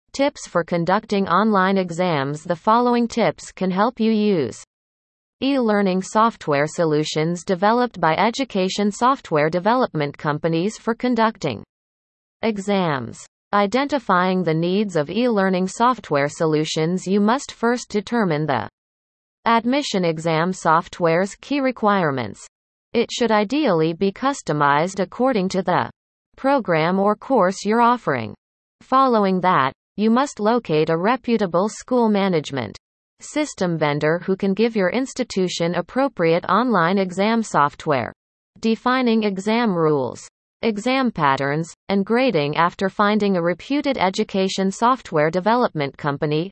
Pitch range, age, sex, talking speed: 165-230 Hz, 30-49, female, 115 wpm